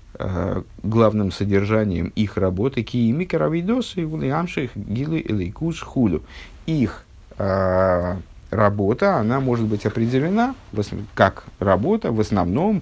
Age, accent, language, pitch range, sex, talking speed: 50-69, native, Russian, 100-130 Hz, male, 90 wpm